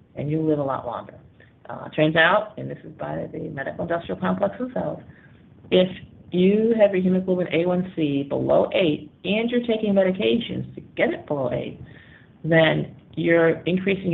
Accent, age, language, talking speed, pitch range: American, 40-59, English, 165 wpm, 135-180 Hz